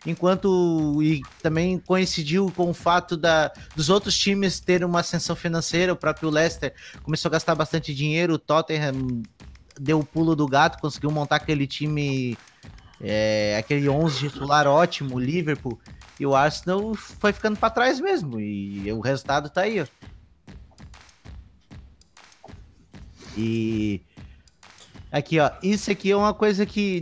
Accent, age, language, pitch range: Brazilian, 20-39, Portuguese, 135-180 Hz